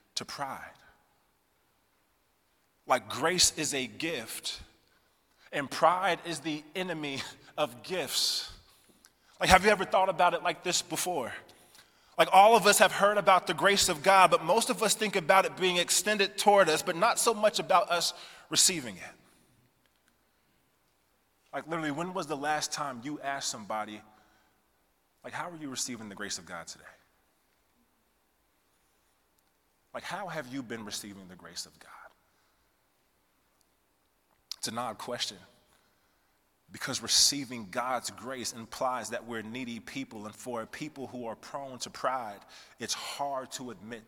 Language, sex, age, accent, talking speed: English, male, 30-49, American, 150 wpm